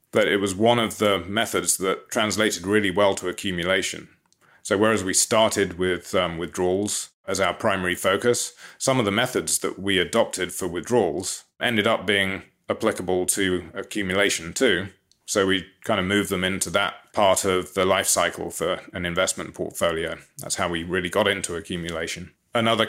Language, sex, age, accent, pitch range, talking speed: English, male, 30-49, British, 95-110 Hz, 170 wpm